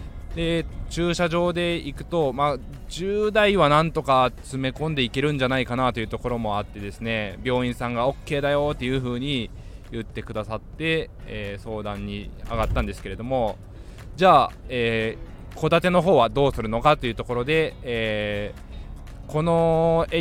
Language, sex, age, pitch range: Japanese, male, 20-39, 110-150 Hz